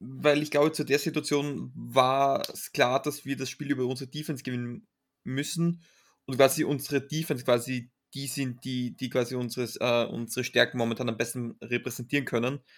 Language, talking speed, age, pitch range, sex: German, 175 wpm, 20-39, 120-145 Hz, male